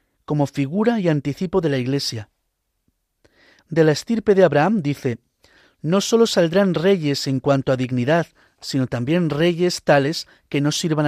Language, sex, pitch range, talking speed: Spanish, male, 130-170 Hz, 150 wpm